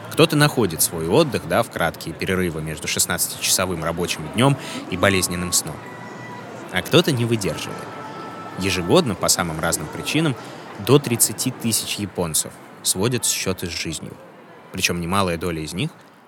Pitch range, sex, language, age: 90-110 Hz, male, Russian, 20-39